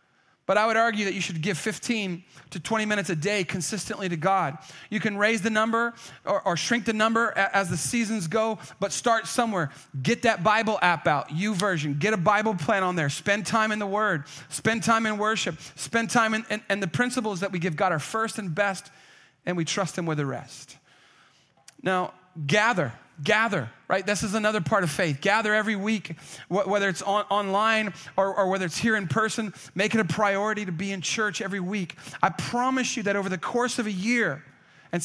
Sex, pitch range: male, 175-225 Hz